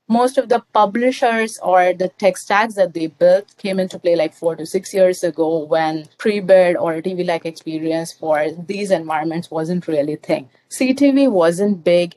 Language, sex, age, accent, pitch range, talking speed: English, female, 30-49, Indian, 160-200 Hz, 175 wpm